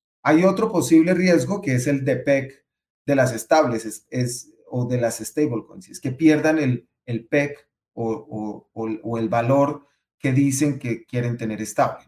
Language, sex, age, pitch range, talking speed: Spanish, male, 30-49, 120-145 Hz, 180 wpm